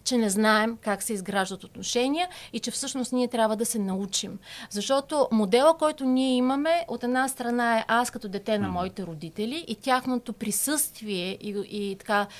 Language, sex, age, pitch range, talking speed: Bulgarian, female, 30-49, 210-260 Hz, 175 wpm